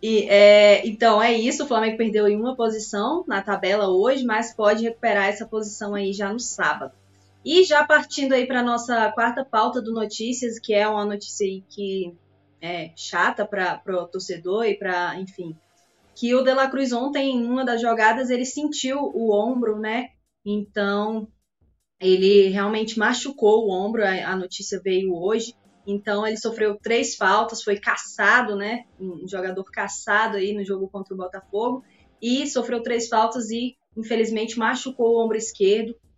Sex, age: female, 20-39